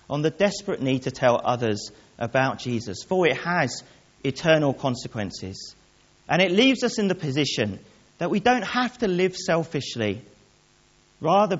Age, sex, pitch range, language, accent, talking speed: 40-59, male, 120-185 Hz, English, British, 150 wpm